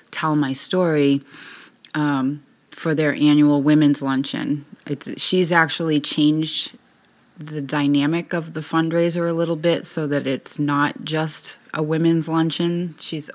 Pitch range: 140-155 Hz